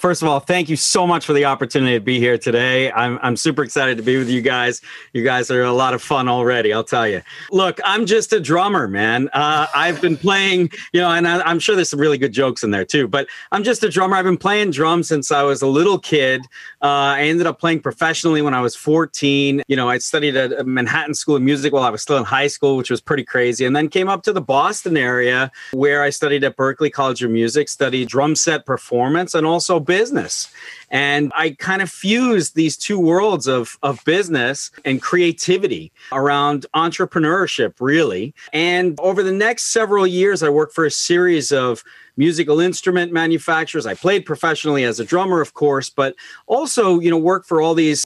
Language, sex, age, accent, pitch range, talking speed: English, male, 40-59, American, 135-170 Hz, 215 wpm